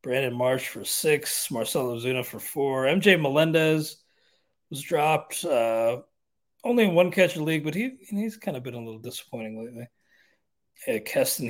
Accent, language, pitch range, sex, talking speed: American, English, 125-165 Hz, male, 155 wpm